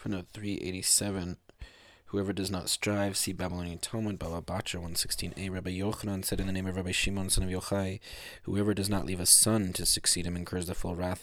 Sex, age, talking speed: male, 20-39, 185 wpm